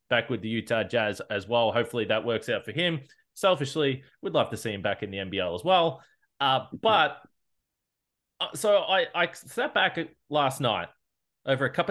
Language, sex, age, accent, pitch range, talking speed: English, male, 20-39, Australian, 110-150 Hz, 190 wpm